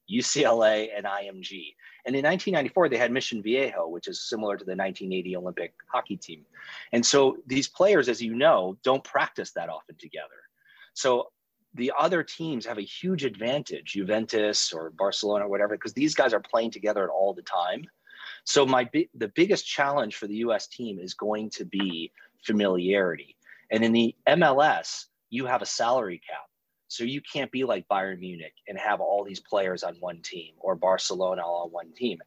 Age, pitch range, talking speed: 30-49, 95-125 Hz, 175 wpm